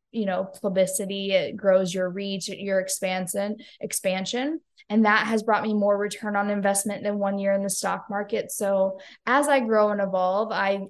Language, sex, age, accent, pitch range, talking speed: English, female, 10-29, American, 195-235 Hz, 175 wpm